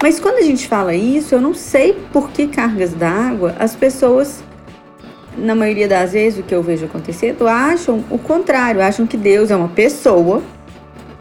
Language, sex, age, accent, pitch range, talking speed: Portuguese, female, 30-49, Brazilian, 185-285 Hz, 175 wpm